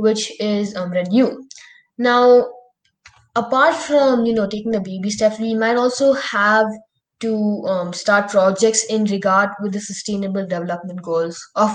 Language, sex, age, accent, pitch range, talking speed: English, female, 20-39, Indian, 195-230 Hz, 150 wpm